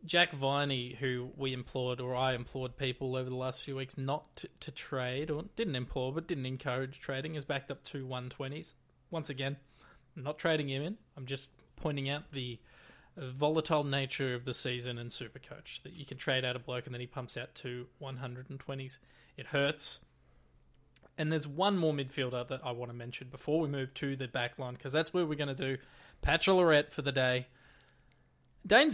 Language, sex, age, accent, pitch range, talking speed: English, male, 20-39, Australian, 125-155 Hz, 195 wpm